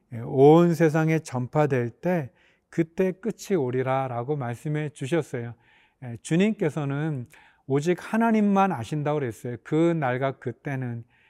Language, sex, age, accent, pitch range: Korean, male, 40-59, native, 130-170 Hz